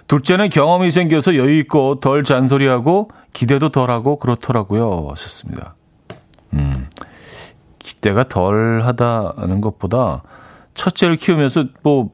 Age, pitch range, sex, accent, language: 40-59, 110-150 Hz, male, native, Korean